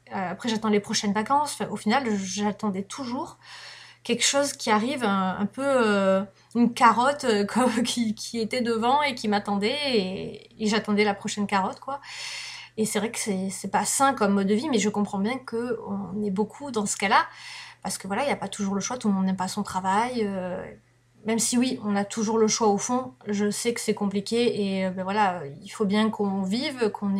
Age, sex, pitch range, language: 20-39, female, 205-235 Hz, French